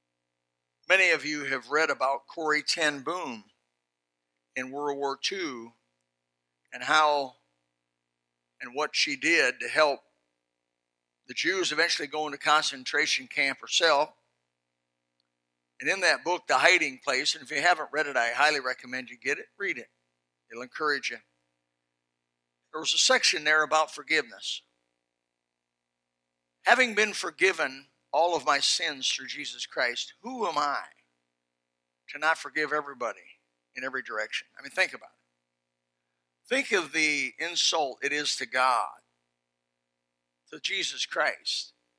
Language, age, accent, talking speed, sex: English, 60-79, American, 135 wpm, male